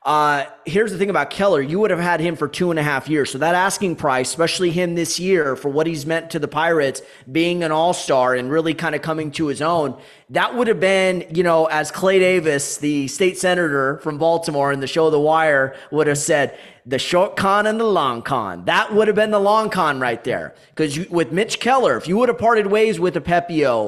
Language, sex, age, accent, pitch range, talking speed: English, male, 30-49, American, 155-190 Hz, 240 wpm